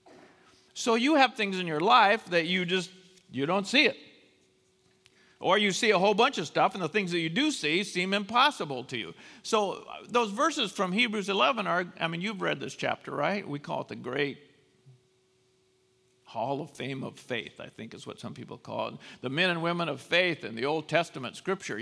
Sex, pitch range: male, 150-200 Hz